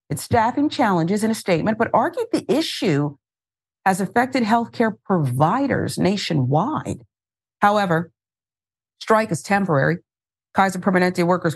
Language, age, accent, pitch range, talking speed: English, 50-69, American, 160-215 Hz, 115 wpm